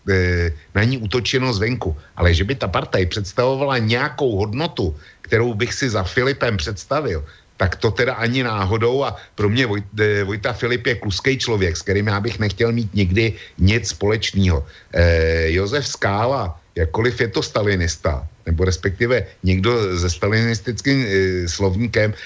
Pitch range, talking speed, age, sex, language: 95-125 Hz, 150 wpm, 60-79, male, Slovak